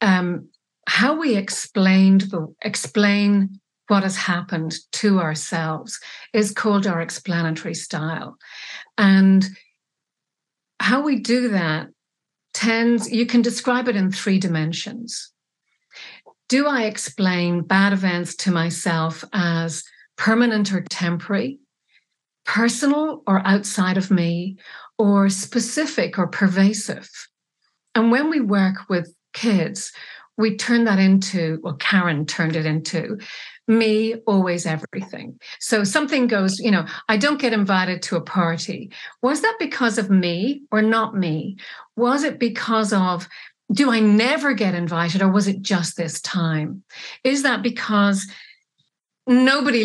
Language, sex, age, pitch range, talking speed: English, female, 50-69, 175-230 Hz, 130 wpm